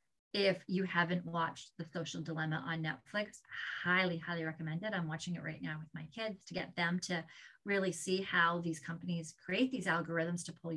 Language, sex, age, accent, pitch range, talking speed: English, female, 30-49, American, 170-200 Hz, 195 wpm